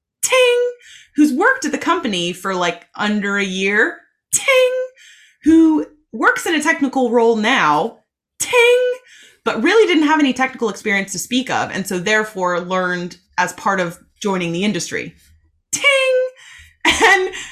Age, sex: 20-39, female